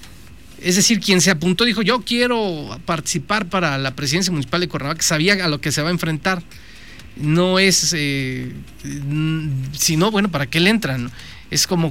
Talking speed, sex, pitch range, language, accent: 170 wpm, male, 150-205 Hz, Spanish, Mexican